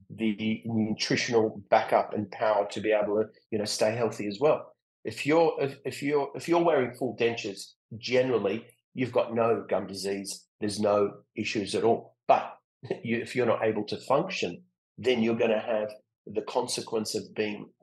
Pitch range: 105-130 Hz